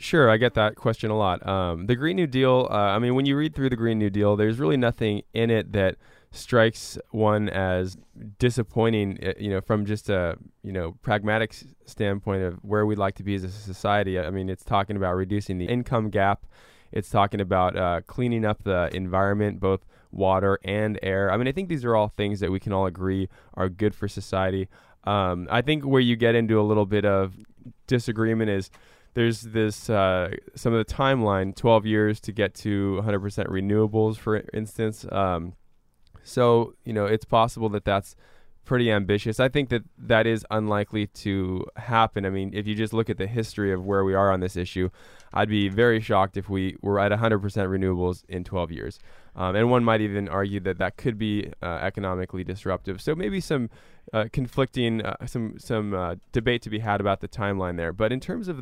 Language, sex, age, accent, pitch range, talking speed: English, male, 10-29, American, 95-115 Hz, 205 wpm